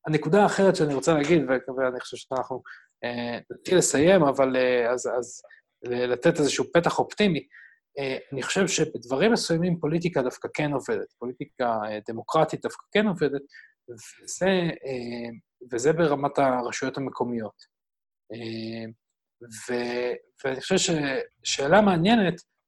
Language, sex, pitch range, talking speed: Hebrew, male, 120-160 Hz, 120 wpm